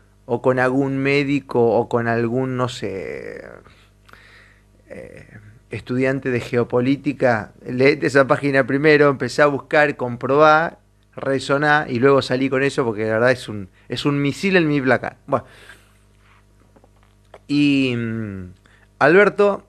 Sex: male